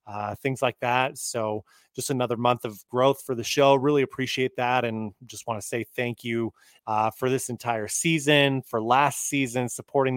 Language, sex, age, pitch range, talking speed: English, male, 30-49, 120-140 Hz, 190 wpm